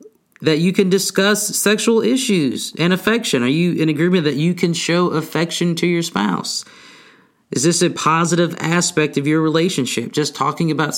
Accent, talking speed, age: American, 170 wpm, 30-49